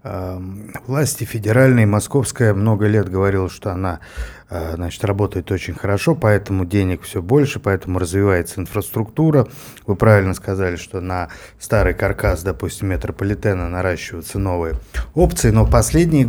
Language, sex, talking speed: Russian, male, 120 wpm